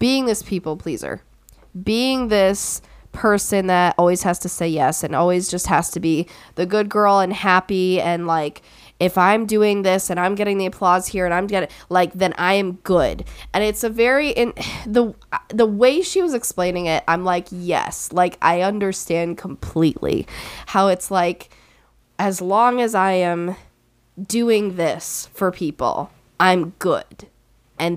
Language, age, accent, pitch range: English, 10-29, American, 175-220 Hz